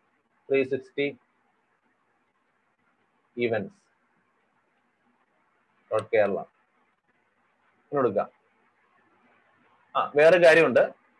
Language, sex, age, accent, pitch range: Malayalam, male, 30-49, native, 150-190 Hz